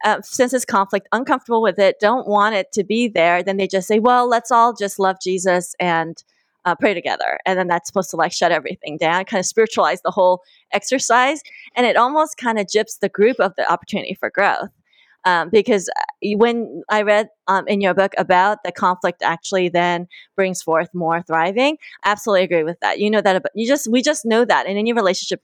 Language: English